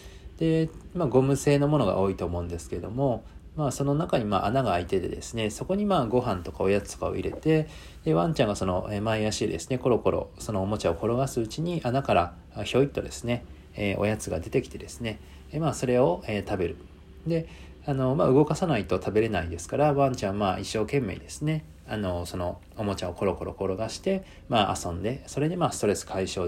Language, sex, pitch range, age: Japanese, male, 90-125 Hz, 40-59